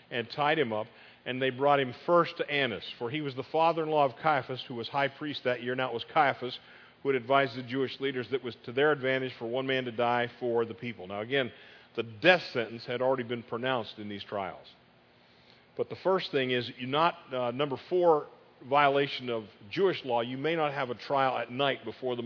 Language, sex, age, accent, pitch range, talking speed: English, male, 50-69, American, 115-140 Hz, 225 wpm